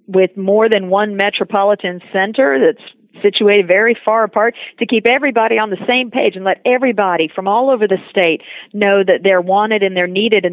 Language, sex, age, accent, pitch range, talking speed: English, female, 50-69, American, 180-220 Hz, 195 wpm